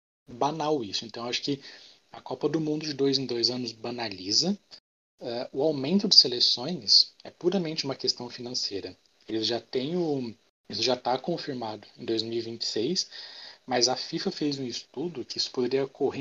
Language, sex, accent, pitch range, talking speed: Portuguese, male, Brazilian, 115-140 Hz, 165 wpm